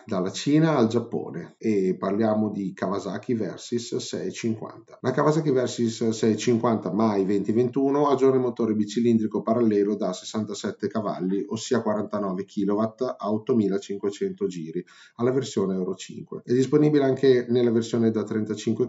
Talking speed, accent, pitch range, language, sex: 130 wpm, native, 100-120 Hz, Italian, male